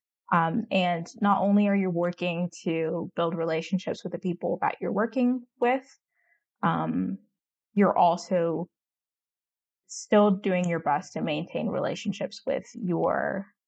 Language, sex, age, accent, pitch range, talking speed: English, female, 20-39, American, 175-230 Hz, 125 wpm